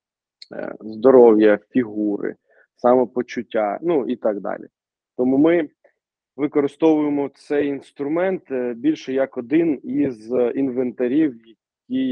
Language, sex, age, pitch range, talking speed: Ukrainian, male, 20-39, 115-135 Hz, 90 wpm